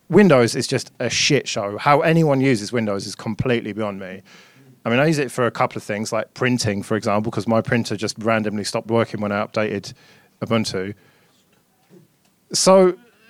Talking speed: 180 wpm